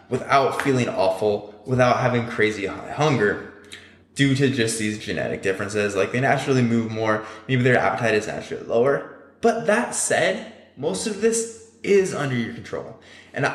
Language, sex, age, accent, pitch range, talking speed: English, male, 20-39, American, 115-170 Hz, 160 wpm